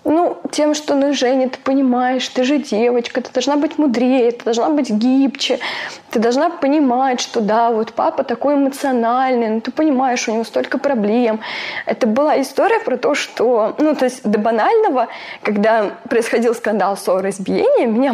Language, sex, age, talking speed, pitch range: Russian, female, 20-39, 165 wpm, 220-285 Hz